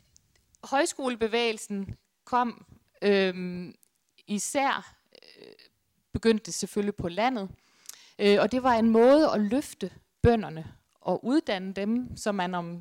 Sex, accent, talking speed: female, native, 105 wpm